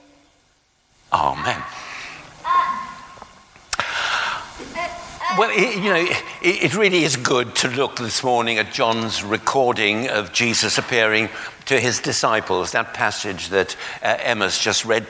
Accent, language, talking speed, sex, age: British, English, 110 wpm, male, 60-79